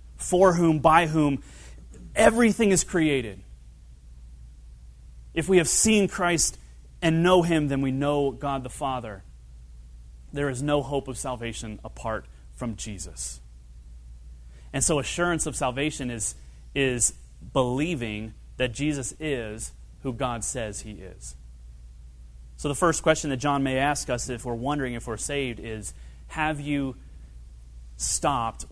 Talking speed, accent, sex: 135 wpm, American, male